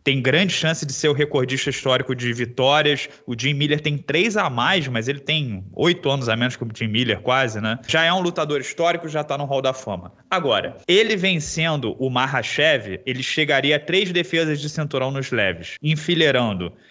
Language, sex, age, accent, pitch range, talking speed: Portuguese, male, 20-39, Brazilian, 130-165 Hz, 200 wpm